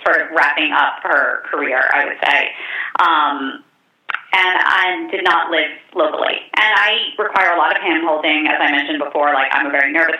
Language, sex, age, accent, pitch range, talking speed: English, female, 30-49, American, 165-205 Hz, 190 wpm